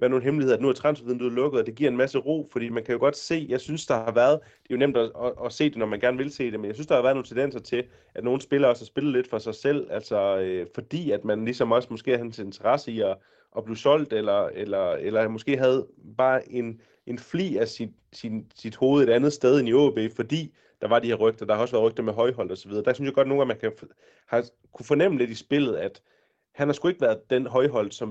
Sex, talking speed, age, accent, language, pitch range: male, 290 wpm, 30-49, native, Danish, 115-140 Hz